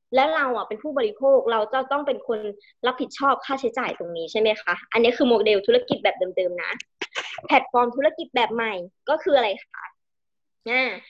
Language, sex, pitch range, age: Thai, male, 225-285 Hz, 20-39